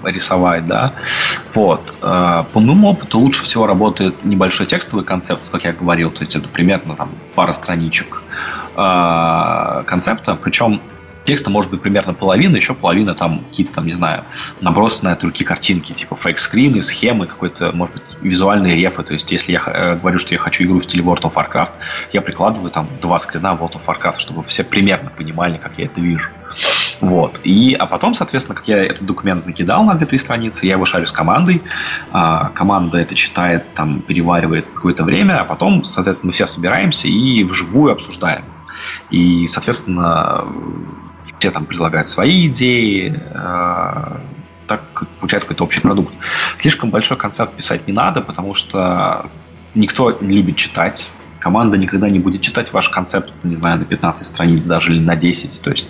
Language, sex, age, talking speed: Russian, male, 20-39, 165 wpm